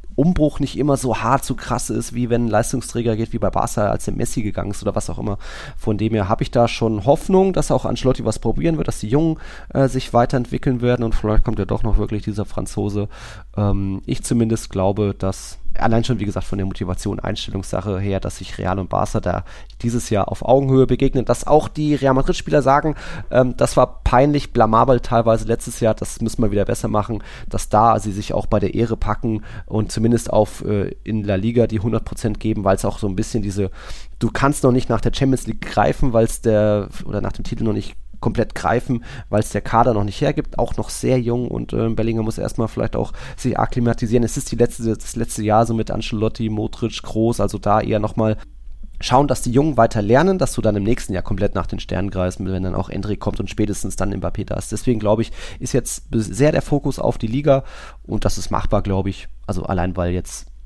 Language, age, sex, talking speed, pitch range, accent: German, 20-39, male, 230 wpm, 100-120 Hz, German